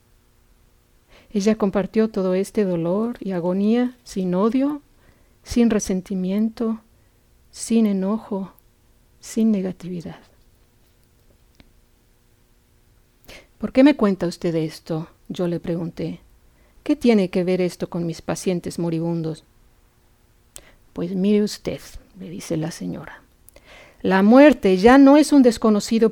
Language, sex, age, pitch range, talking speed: English, female, 50-69, 175-225 Hz, 110 wpm